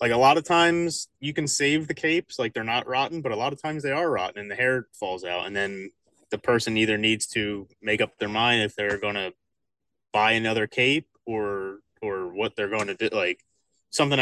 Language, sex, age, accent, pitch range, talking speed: English, male, 20-39, American, 105-140 Hz, 230 wpm